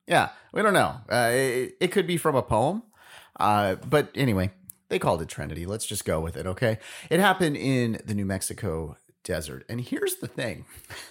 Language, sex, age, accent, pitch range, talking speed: English, male, 30-49, American, 120-185 Hz, 195 wpm